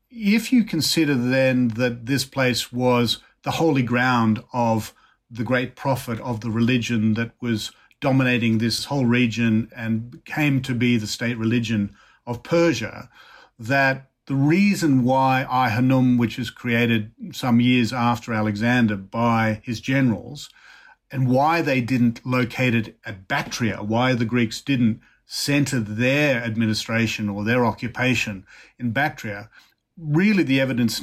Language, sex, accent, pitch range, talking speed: English, male, Australian, 115-130 Hz, 135 wpm